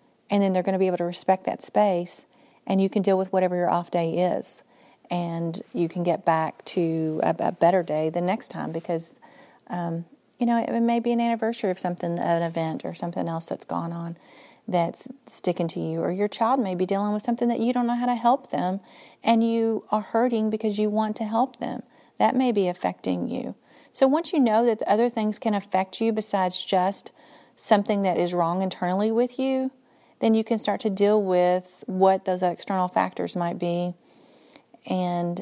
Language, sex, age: English, female, 40-59